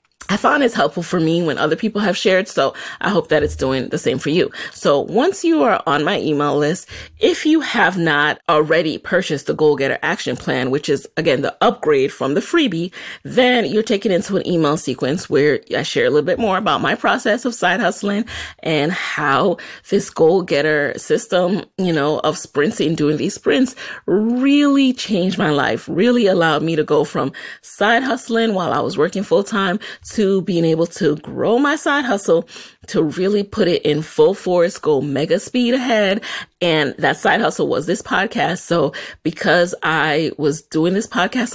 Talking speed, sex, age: 190 wpm, female, 30-49